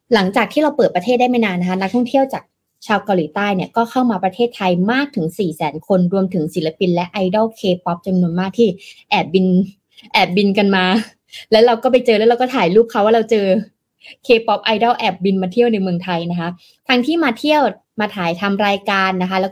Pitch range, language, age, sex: 175-230 Hz, Thai, 20-39, female